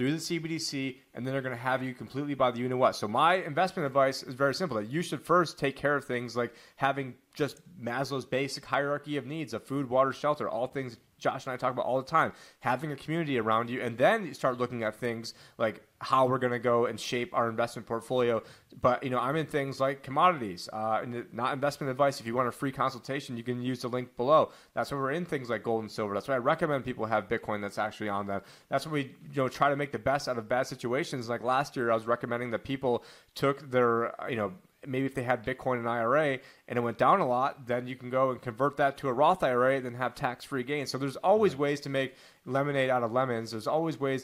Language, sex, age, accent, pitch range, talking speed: English, male, 30-49, American, 120-145 Hz, 255 wpm